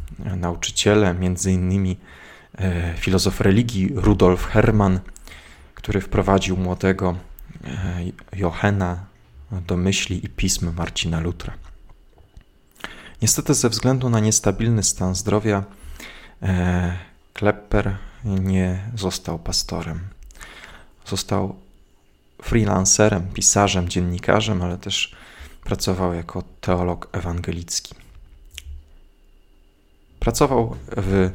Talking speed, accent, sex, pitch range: 75 wpm, native, male, 85-100 Hz